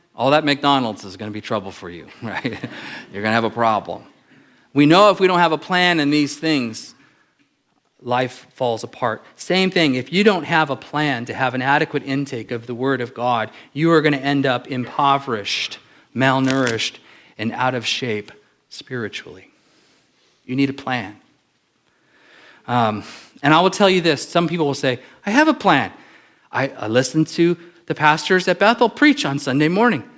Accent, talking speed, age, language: American, 185 wpm, 40-59, English